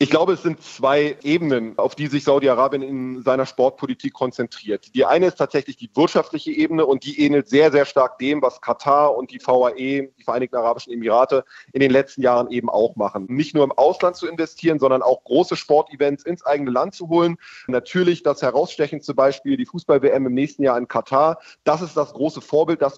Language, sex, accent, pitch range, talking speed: German, male, German, 135-165 Hz, 200 wpm